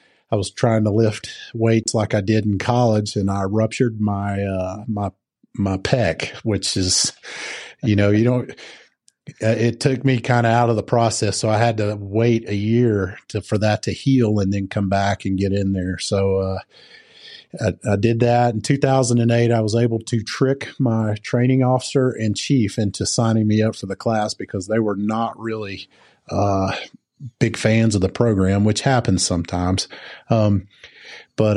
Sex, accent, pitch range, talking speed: male, American, 100-120 Hz, 180 wpm